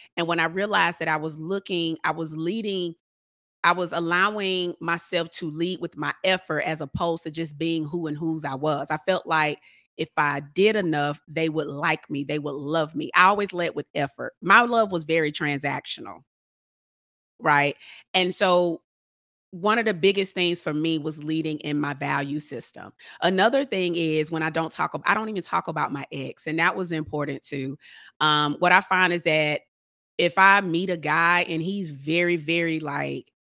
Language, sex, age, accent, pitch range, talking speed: English, female, 30-49, American, 150-175 Hz, 190 wpm